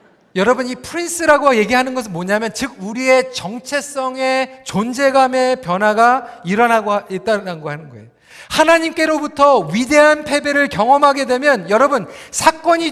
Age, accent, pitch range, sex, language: 40-59, native, 200-285 Hz, male, Korean